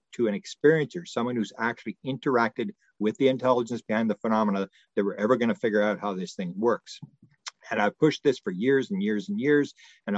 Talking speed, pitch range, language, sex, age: 205 wpm, 105-140 Hz, English, male, 50-69